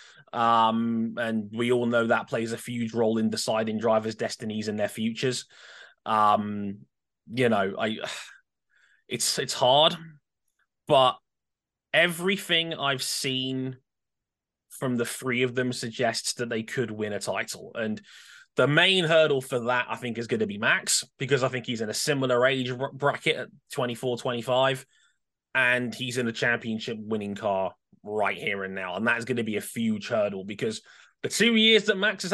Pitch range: 115-155 Hz